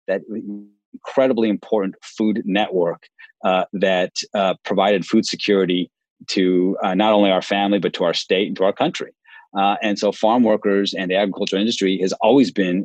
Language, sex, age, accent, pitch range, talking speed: English, male, 30-49, American, 95-110 Hz, 175 wpm